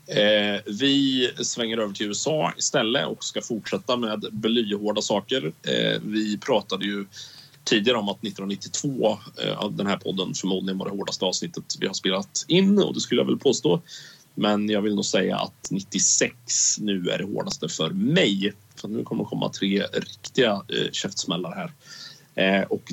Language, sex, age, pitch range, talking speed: Swedish, male, 30-49, 100-130 Hz, 170 wpm